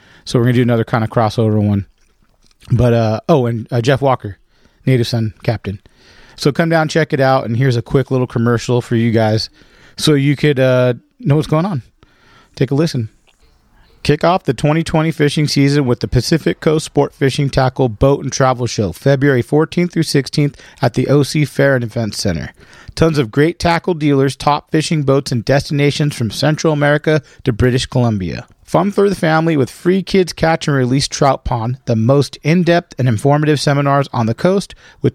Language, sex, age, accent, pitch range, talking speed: English, male, 40-59, American, 120-150 Hz, 190 wpm